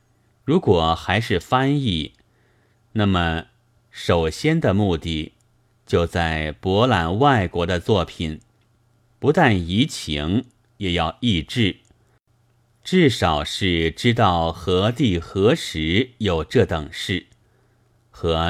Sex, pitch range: male, 90-120 Hz